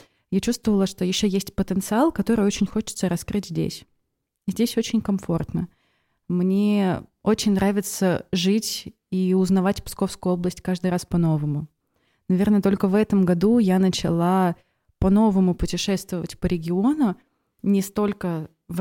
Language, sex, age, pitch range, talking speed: Russian, female, 20-39, 175-200 Hz, 125 wpm